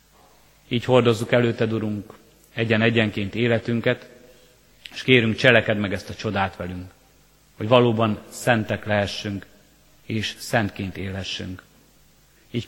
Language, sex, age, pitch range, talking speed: Hungarian, male, 30-49, 105-125 Hz, 105 wpm